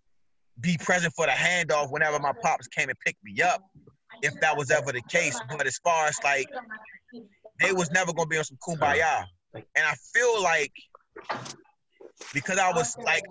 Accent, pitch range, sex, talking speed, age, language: American, 145-175 Hz, male, 180 wpm, 30-49, English